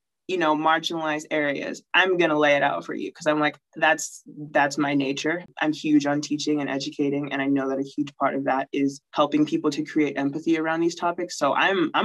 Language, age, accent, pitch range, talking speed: English, 20-39, American, 150-190 Hz, 230 wpm